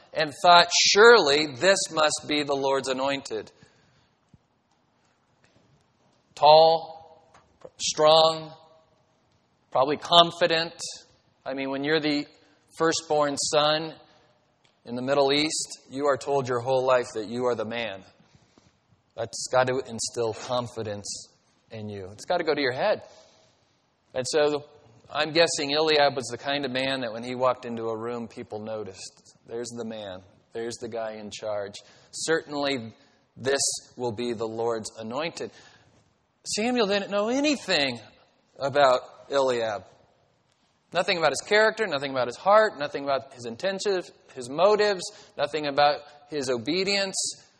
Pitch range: 125-165 Hz